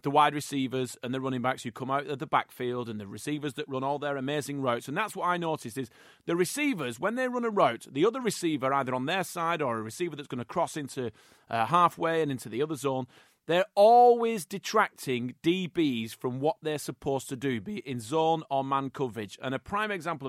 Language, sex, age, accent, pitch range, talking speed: English, male, 30-49, British, 130-180 Hz, 230 wpm